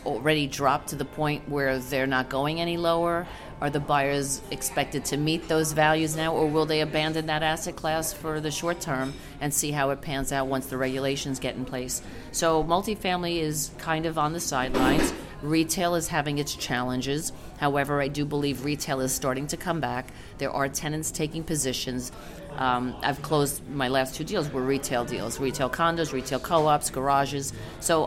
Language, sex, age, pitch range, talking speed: English, female, 40-59, 135-155 Hz, 185 wpm